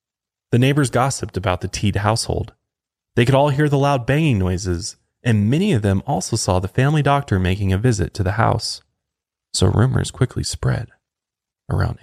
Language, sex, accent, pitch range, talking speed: English, male, American, 95-125 Hz, 175 wpm